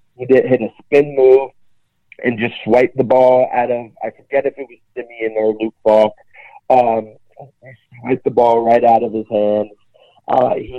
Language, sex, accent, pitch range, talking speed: English, male, American, 110-130 Hz, 190 wpm